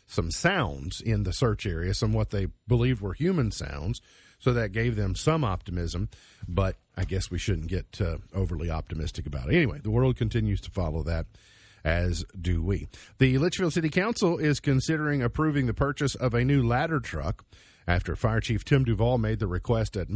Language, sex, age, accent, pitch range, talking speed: English, male, 50-69, American, 95-125 Hz, 190 wpm